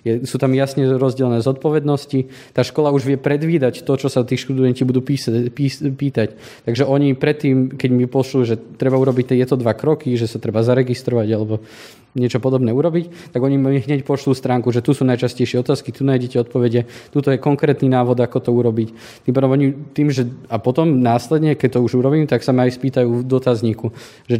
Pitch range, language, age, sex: 120-135 Hz, Slovak, 20-39, male